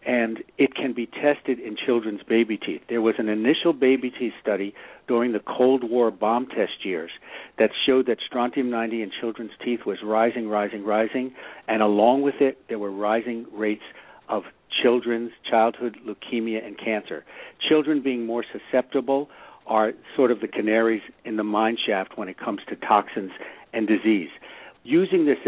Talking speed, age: 165 wpm, 60-79